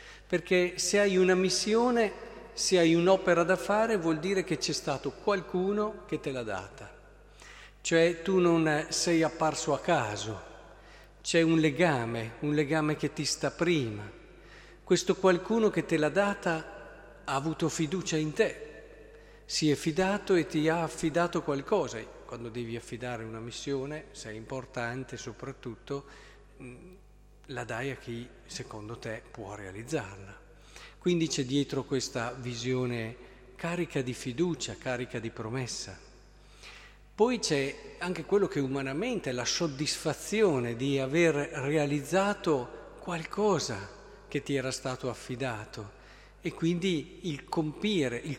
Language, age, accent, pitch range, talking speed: Italian, 50-69, native, 130-180 Hz, 130 wpm